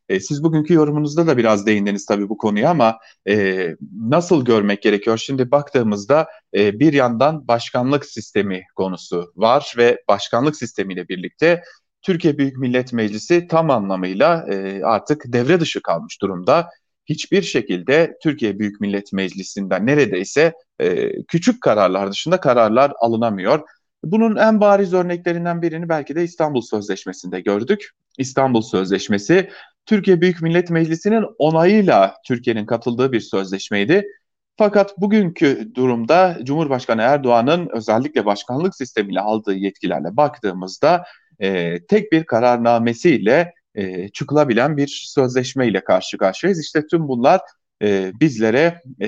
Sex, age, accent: male, 40-59, Turkish